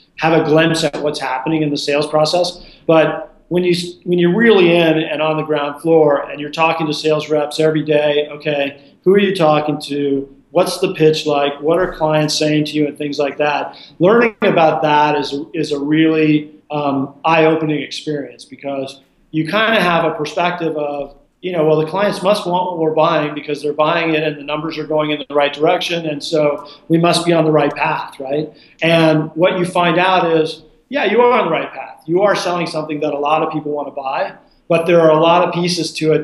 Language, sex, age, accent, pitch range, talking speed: English, male, 40-59, American, 150-170 Hz, 225 wpm